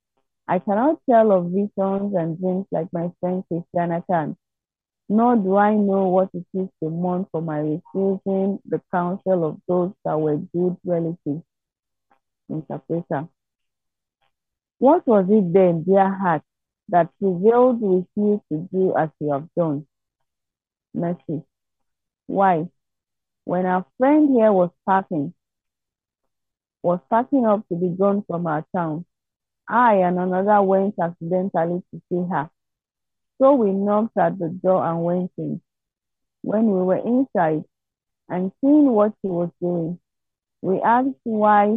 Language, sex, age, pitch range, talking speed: English, female, 40-59, 170-205 Hz, 135 wpm